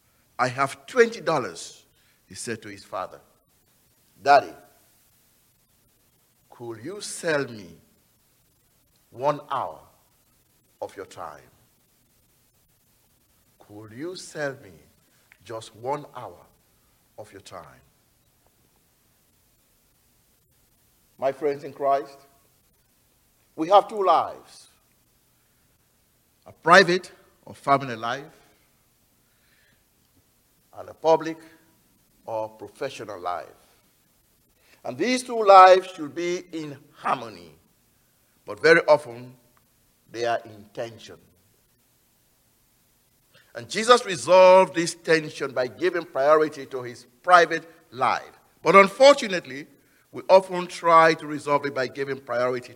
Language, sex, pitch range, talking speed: English, male, 120-170 Hz, 95 wpm